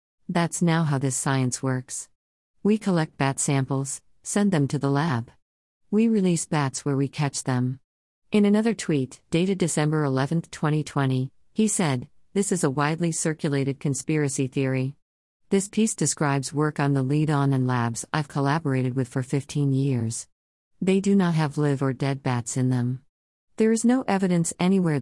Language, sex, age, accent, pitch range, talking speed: English, female, 50-69, American, 130-155 Hz, 165 wpm